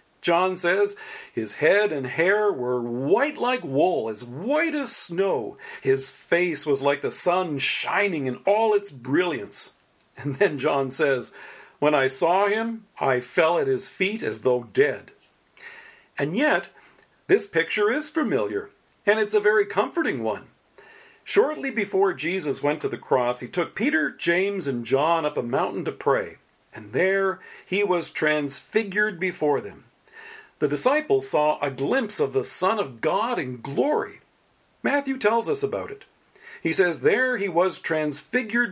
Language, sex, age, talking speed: English, male, 40-59, 155 wpm